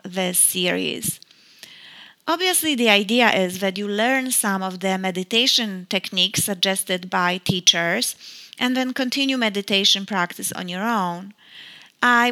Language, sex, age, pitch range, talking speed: English, female, 30-49, 195-230 Hz, 125 wpm